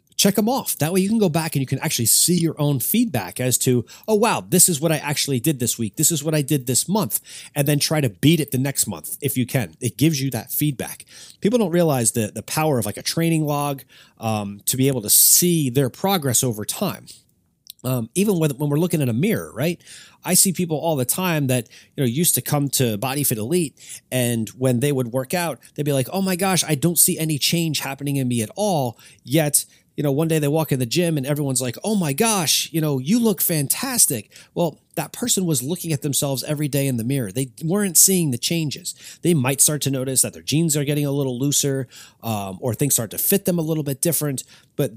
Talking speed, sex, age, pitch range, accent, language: 245 wpm, male, 30-49, 125-165 Hz, American, English